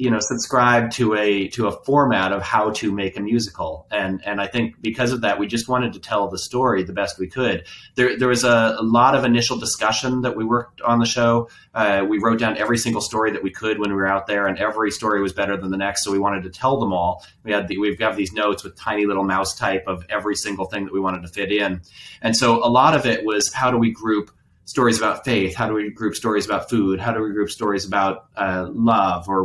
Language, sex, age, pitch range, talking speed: English, male, 30-49, 100-120 Hz, 265 wpm